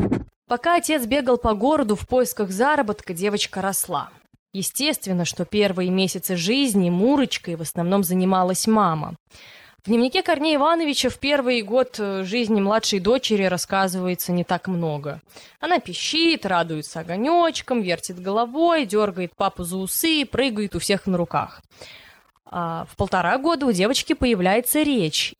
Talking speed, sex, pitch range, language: 135 wpm, female, 180-245 Hz, Russian